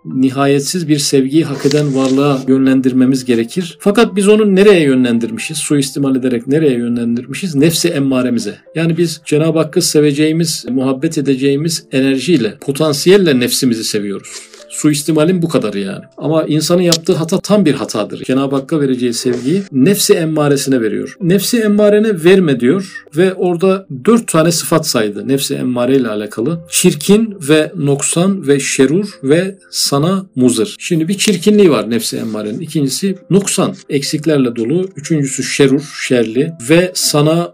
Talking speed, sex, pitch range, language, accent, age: 135 wpm, male, 135-175 Hz, Turkish, native, 50-69